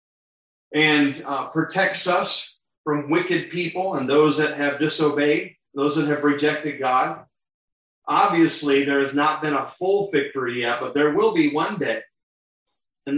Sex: male